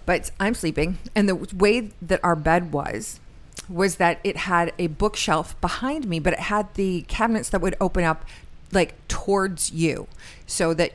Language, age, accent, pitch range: English, 40-59, American, 165-200 Hz